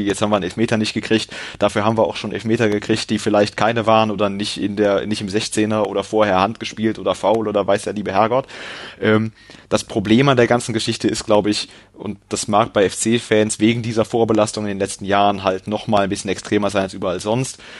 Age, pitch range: 30-49, 100-115 Hz